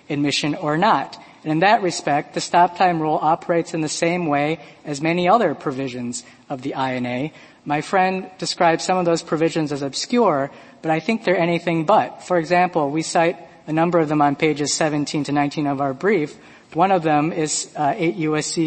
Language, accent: English, American